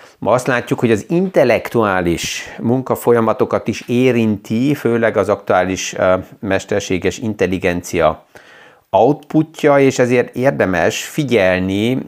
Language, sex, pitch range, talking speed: Hungarian, male, 95-120 Hz, 95 wpm